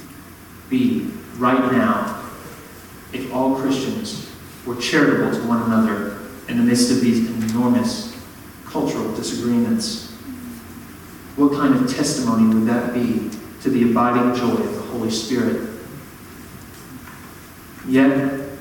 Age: 30-49